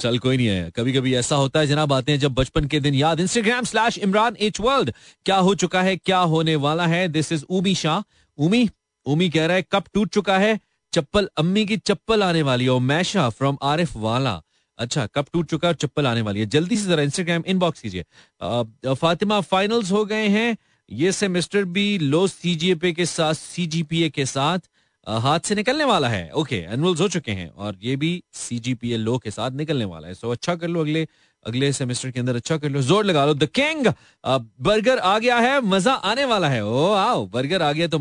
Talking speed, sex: 205 wpm, male